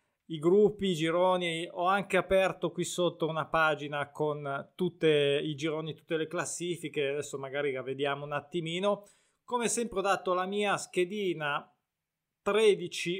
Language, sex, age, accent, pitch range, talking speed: Italian, male, 20-39, native, 155-195 Hz, 145 wpm